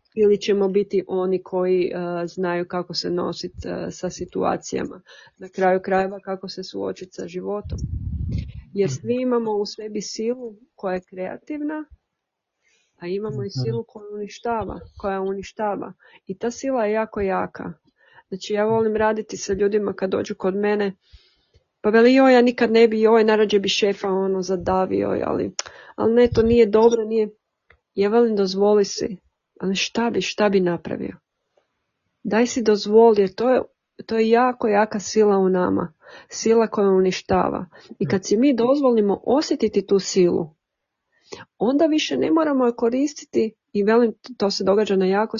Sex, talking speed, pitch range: female, 160 wpm, 190-225 Hz